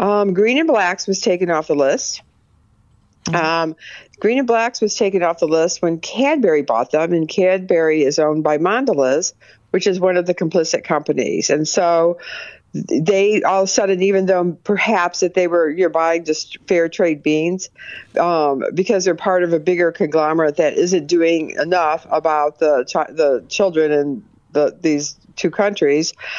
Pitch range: 155-190 Hz